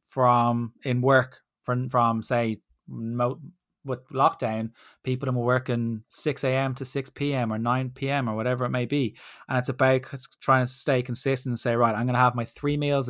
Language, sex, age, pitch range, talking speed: English, male, 20-39, 120-130 Hz, 195 wpm